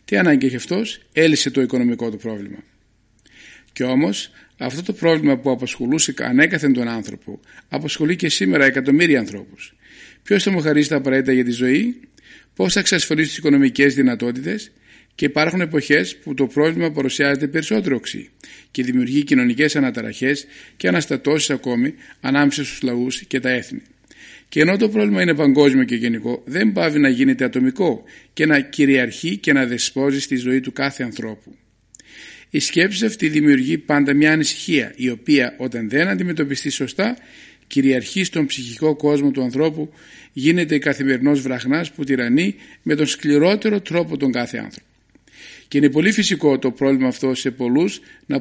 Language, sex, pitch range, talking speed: Greek, male, 130-160 Hz, 155 wpm